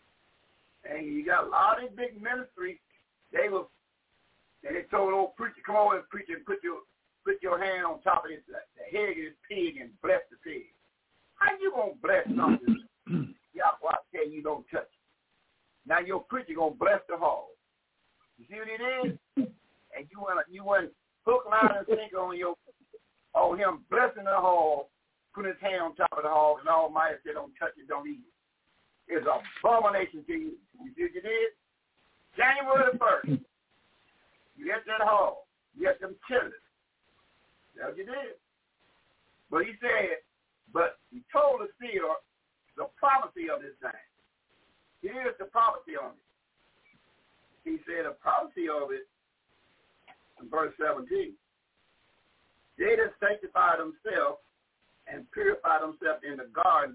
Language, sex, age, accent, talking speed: English, male, 60-79, American, 165 wpm